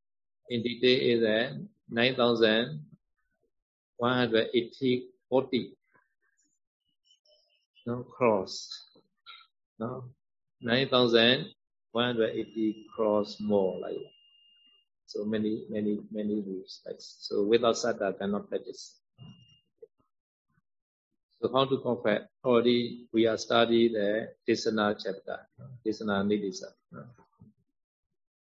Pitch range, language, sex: 110-130 Hz, Vietnamese, male